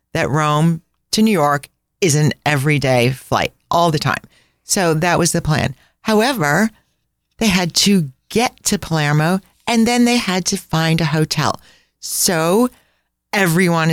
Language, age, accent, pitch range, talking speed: English, 40-59, American, 135-175 Hz, 145 wpm